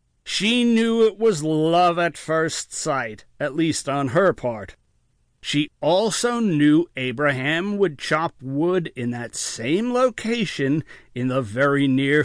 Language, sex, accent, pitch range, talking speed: English, male, American, 135-185 Hz, 135 wpm